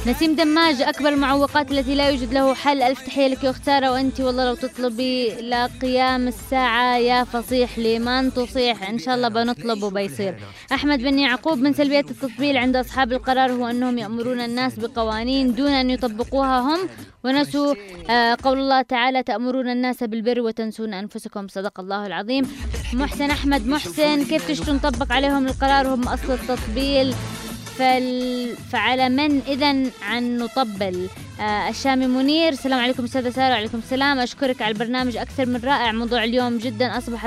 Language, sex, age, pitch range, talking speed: English, female, 20-39, 240-270 Hz, 145 wpm